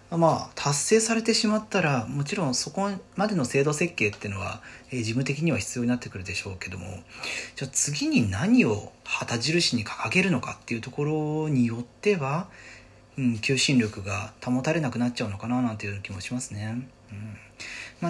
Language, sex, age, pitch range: Japanese, male, 40-59, 105-155 Hz